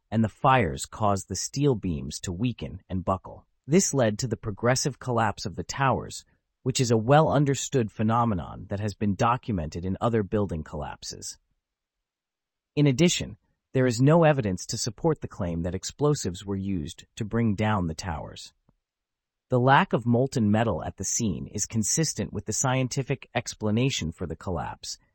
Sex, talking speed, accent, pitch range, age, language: male, 165 wpm, American, 95-130 Hz, 30-49, English